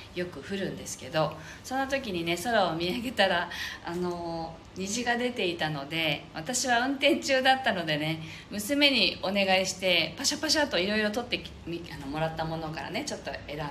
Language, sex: Japanese, female